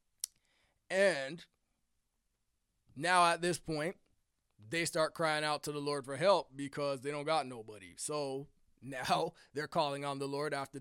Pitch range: 135-170 Hz